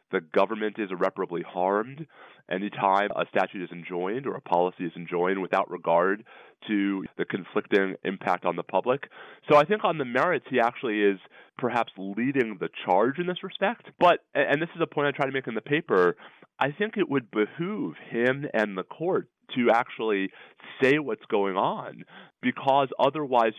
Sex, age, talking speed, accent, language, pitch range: male, 30-49, 180 wpm, American, English, 95-135 Hz